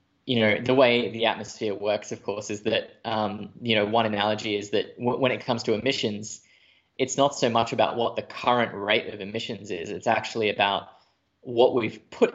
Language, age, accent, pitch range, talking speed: English, 10-29, Australian, 105-125 Hz, 200 wpm